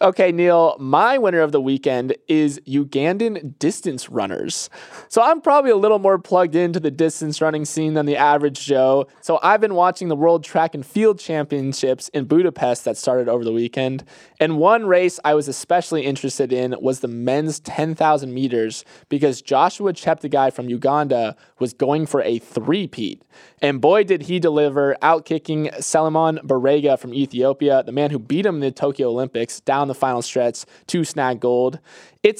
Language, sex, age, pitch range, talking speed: English, male, 20-39, 130-165 Hz, 175 wpm